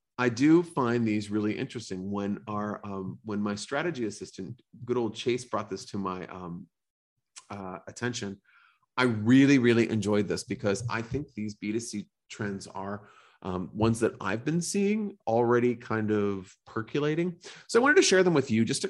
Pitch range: 100-125 Hz